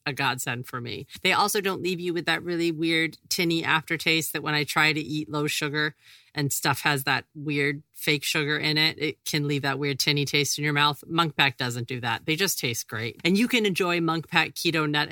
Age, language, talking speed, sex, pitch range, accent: 40-59, English, 235 wpm, female, 140-170 Hz, American